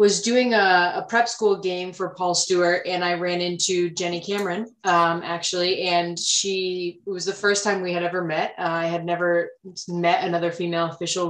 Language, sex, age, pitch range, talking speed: English, female, 20-39, 160-185 Hz, 195 wpm